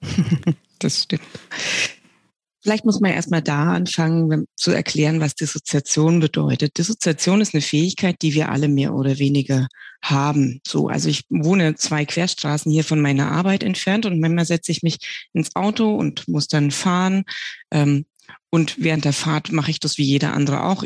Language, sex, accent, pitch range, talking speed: German, female, German, 145-190 Hz, 165 wpm